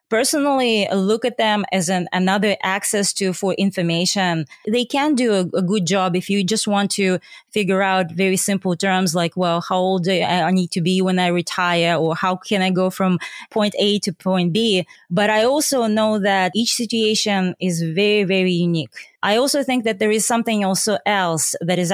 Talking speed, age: 200 wpm, 20-39